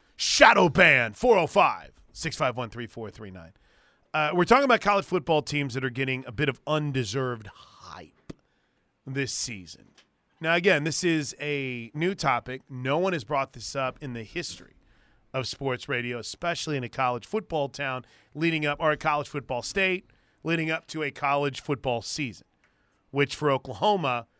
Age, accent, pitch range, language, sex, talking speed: 30-49, American, 125-160 Hz, English, male, 150 wpm